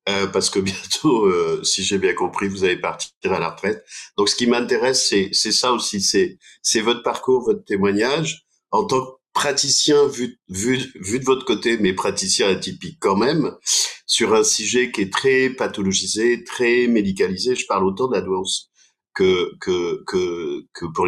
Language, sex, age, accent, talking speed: French, male, 50-69, French, 175 wpm